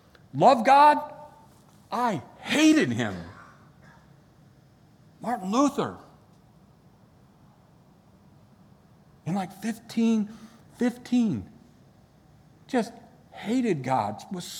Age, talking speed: 50-69, 60 wpm